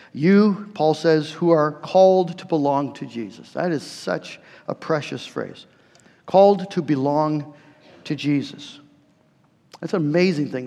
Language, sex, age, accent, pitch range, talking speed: English, male, 50-69, American, 145-170 Hz, 140 wpm